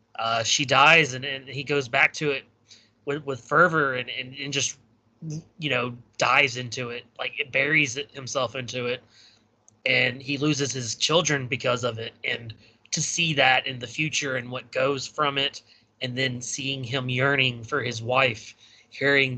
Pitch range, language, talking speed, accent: 120-140 Hz, English, 180 wpm, American